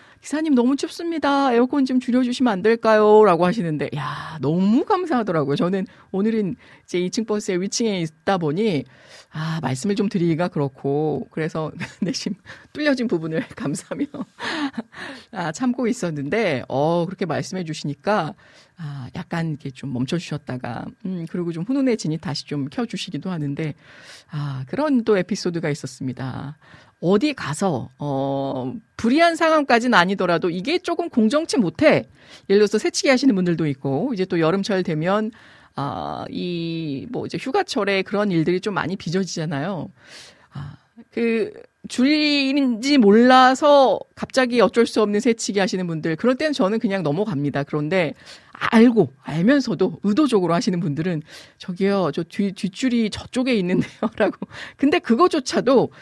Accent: native